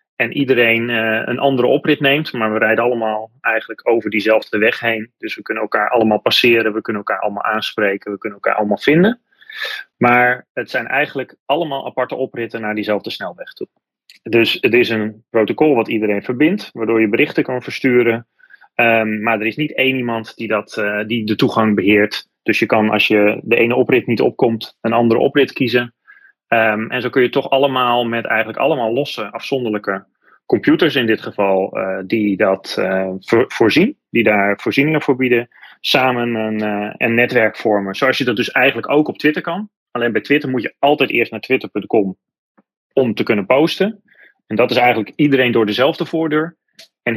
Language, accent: Dutch, Dutch